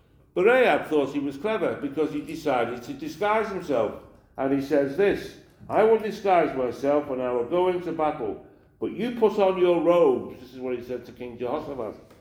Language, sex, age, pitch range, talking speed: English, male, 60-79, 125-175 Hz, 195 wpm